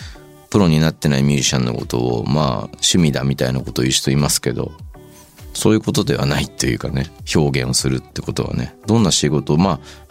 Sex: male